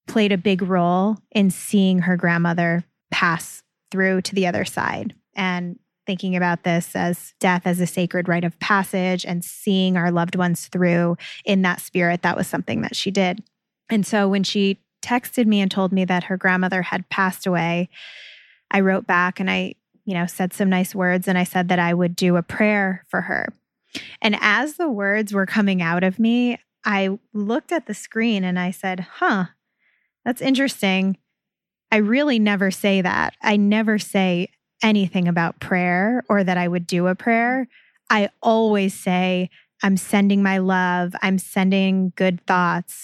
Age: 20-39